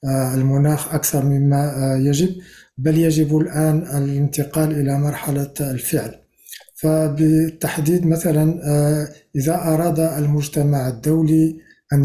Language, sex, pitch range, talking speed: Arabic, male, 140-160 Hz, 90 wpm